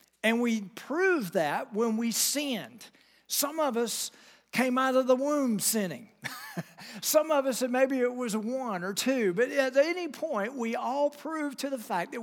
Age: 50-69